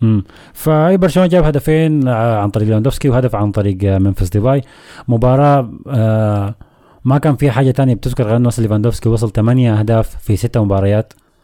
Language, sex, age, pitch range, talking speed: Arabic, male, 20-39, 100-130 Hz, 165 wpm